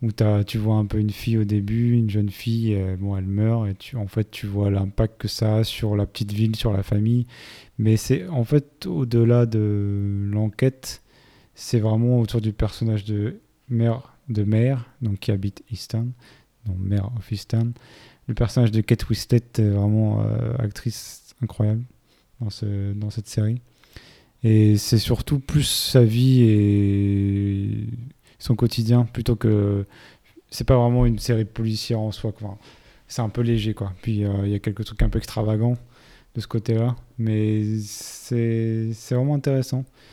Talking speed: 170 wpm